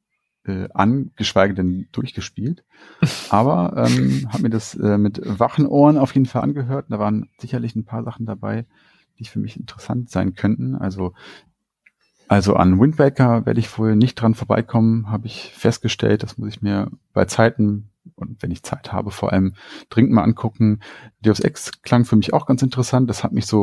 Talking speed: 180 wpm